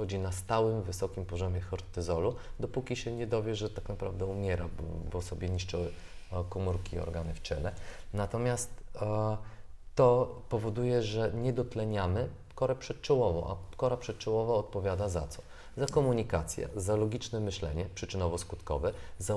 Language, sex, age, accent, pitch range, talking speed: Polish, male, 30-49, native, 95-120 Hz, 135 wpm